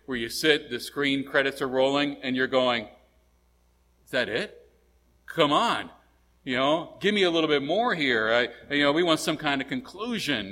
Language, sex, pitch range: English, male, 110-140 Hz